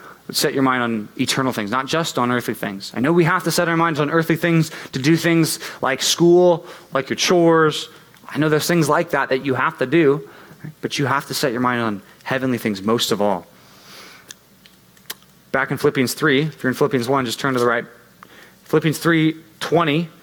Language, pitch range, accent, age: English, 130-175 Hz, American, 20-39